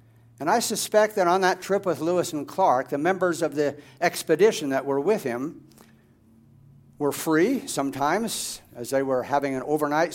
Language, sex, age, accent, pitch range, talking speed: English, male, 60-79, American, 135-175 Hz, 170 wpm